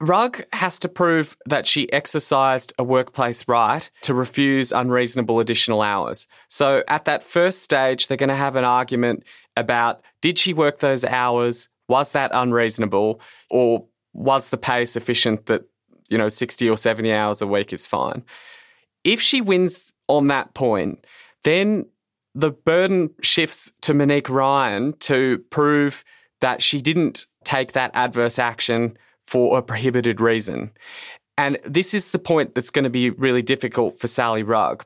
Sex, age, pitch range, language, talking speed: male, 20-39, 120-150 Hz, English, 155 wpm